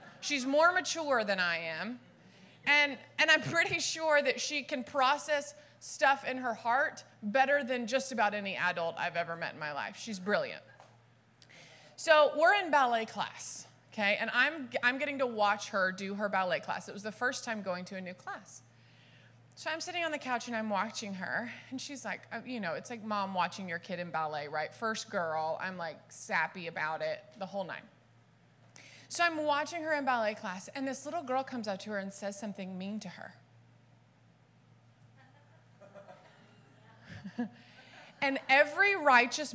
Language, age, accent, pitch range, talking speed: English, 20-39, American, 195-290 Hz, 180 wpm